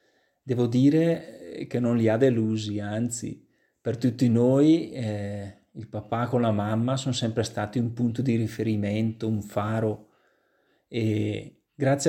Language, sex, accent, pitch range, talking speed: Italian, male, native, 110-125 Hz, 140 wpm